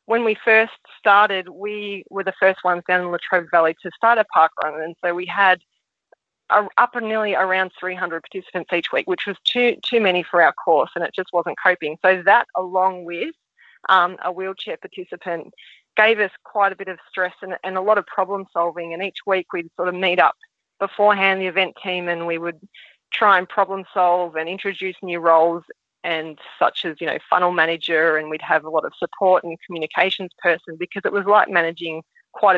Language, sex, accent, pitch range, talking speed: English, female, Australian, 170-195 Hz, 205 wpm